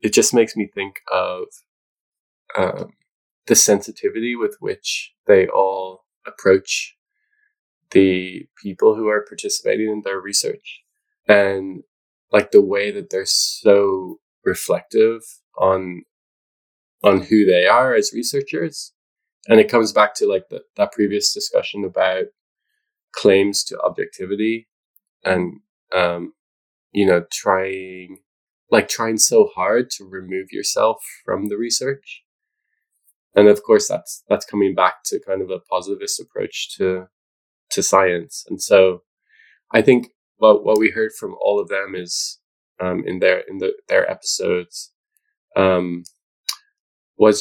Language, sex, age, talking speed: English, male, 20-39, 130 wpm